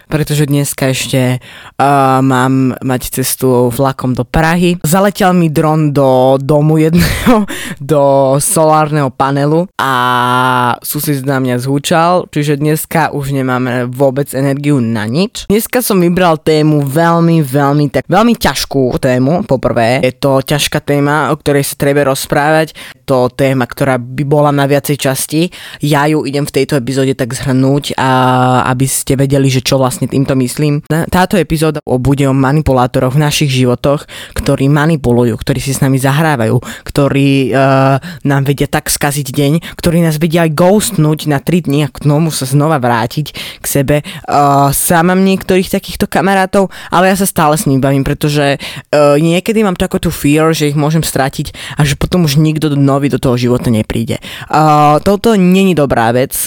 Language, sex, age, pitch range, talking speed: Slovak, female, 20-39, 130-155 Hz, 165 wpm